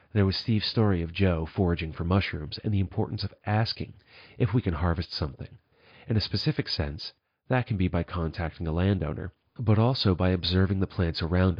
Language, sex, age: English, male, 40-59